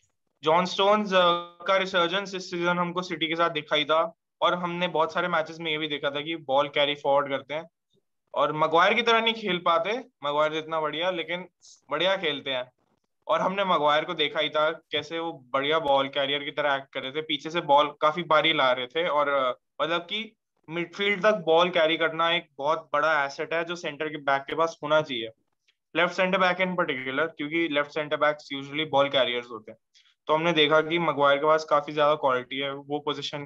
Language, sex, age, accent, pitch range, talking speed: Hindi, male, 20-39, native, 145-175 Hz, 205 wpm